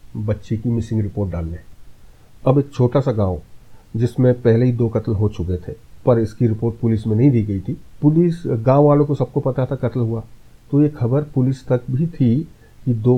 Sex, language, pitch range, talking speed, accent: male, Hindi, 105-125 Hz, 205 wpm, native